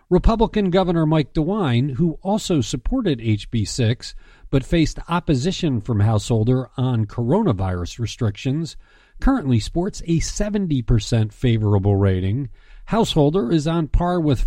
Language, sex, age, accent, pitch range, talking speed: English, male, 50-69, American, 110-165 Hz, 110 wpm